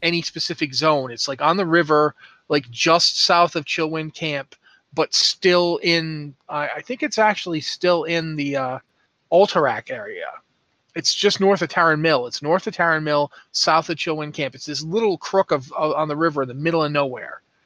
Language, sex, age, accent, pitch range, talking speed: English, male, 30-49, American, 145-180 Hz, 195 wpm